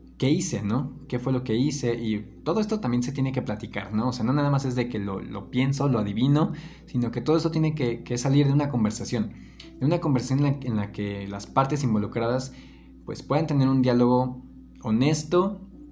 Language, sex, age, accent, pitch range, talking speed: Spanish, male, 20-39, Mexican, 110-140 Hz, 215 wpm